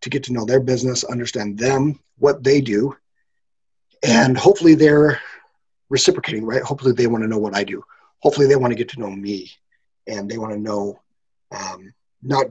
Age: 40-59